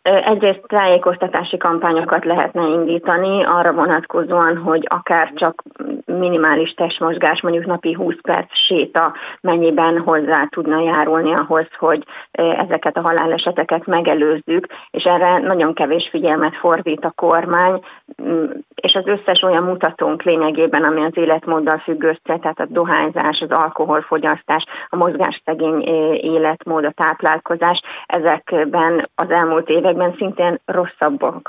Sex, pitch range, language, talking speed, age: female, 160-175 Hz, Hungarian, 115 wpm, 30-49